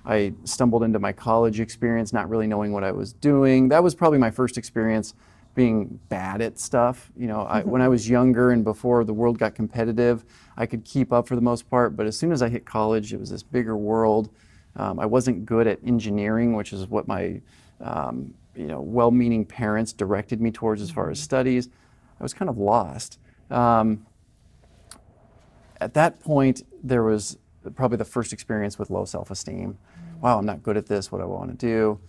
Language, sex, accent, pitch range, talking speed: English, male, American, 105-125 Hz, 200 wpm